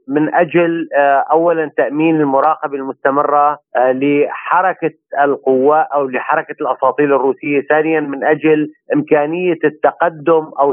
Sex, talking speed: male, 100 wpm